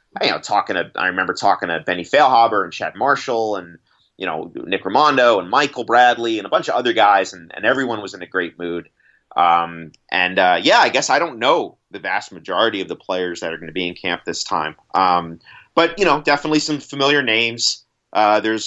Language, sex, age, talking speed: English, male, 30-49, 220 wpm